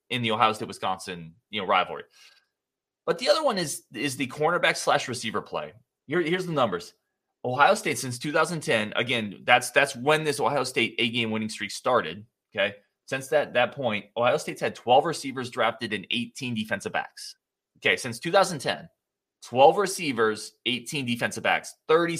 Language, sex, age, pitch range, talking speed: English, male, 30-49, 115-170 Hz, 160 wpm